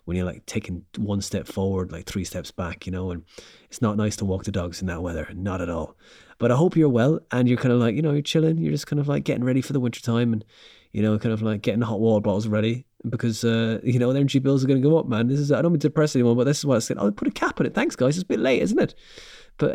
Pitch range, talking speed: 100-130 Hz, 320 wpm